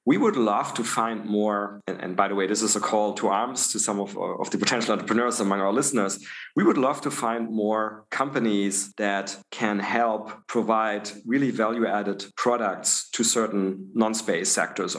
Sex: male